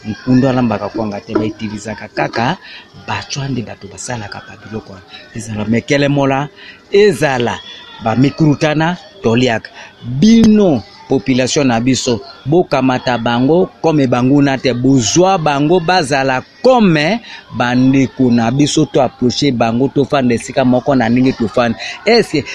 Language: English